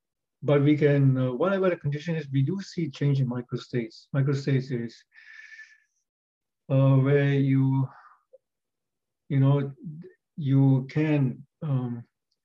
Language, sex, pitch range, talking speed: English, male, 130-150 Hz, 115 wpm